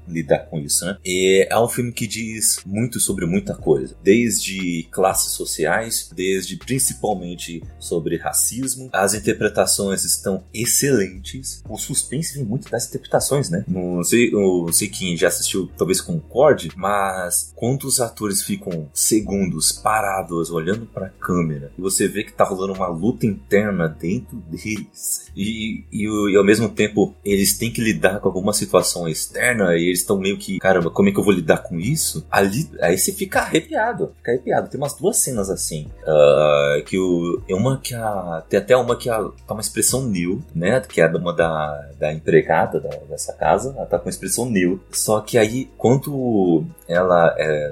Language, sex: Portuguese, male